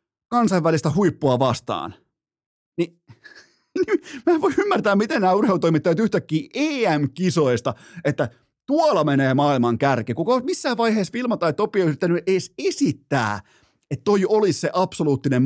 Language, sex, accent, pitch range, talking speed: Finnish, male, native, 120-165 Hz, 130 wpm